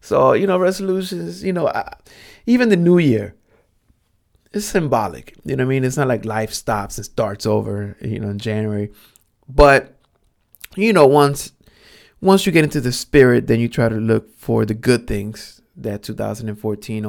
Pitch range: 105-125 Hz